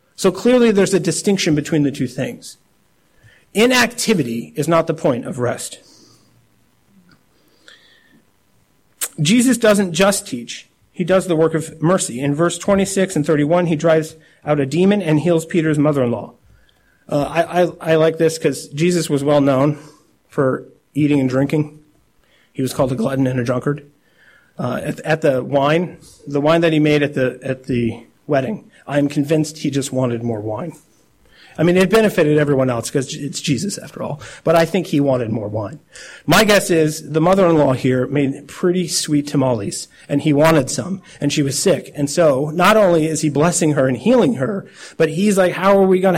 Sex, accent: male, American